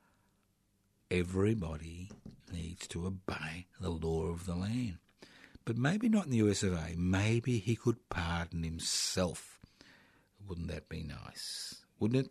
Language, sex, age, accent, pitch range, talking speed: English, male, 50-69, Australian, 90-110 Hz, 120 wpm